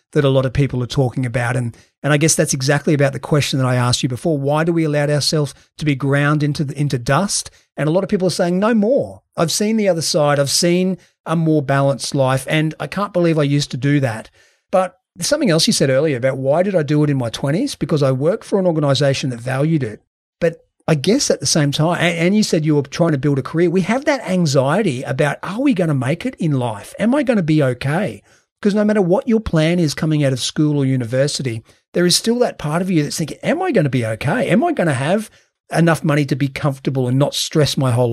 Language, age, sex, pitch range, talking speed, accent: English, 40-59, male, 140-175 Hz, 265 wpm, Australian